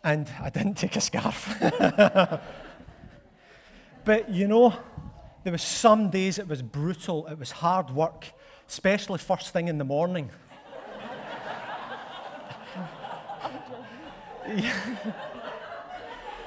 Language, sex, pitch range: English, male, 155-210 Hz